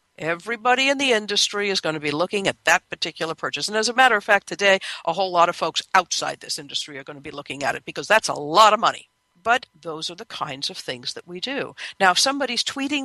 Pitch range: 160-225 Hz